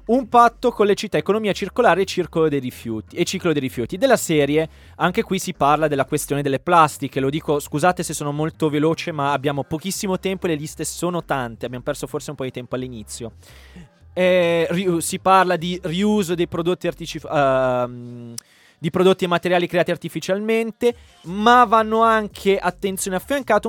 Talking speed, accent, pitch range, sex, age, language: 175 wpm, native, 150-205 Hz, male, 20-39, Italian